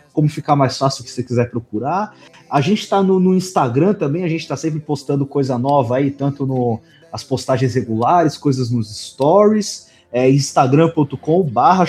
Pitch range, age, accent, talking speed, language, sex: 140-180 Hz, 20-39, Brazilian, 175 wpm, Portuguese, male